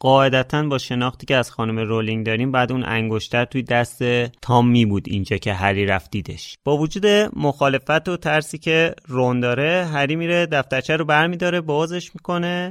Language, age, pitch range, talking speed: Persian, 30-49, 110-155 Hz, 160 wpm